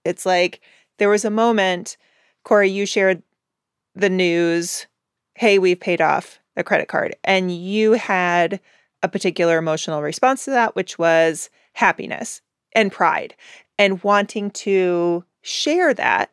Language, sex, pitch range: English, female, 175-220 Hz